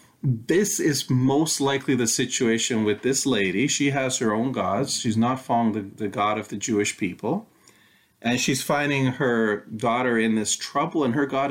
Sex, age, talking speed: male, 40-59, 180 wpm